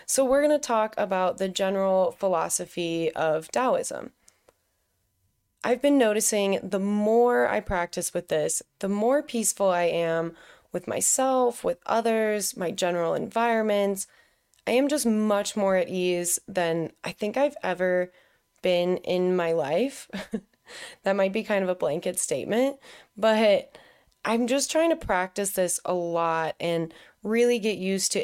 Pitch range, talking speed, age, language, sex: 170-220 Hz, 150 wpm, 20-39, English, female